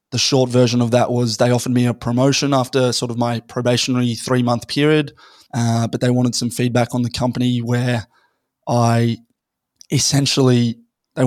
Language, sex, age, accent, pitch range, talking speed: English, male, 20-39, Australian, 120-125 Hz, 165 wpm